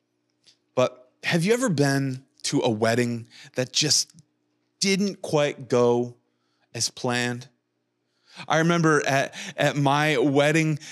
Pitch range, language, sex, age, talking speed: 135-175 Hz, English, male, 20-39, 110 wpm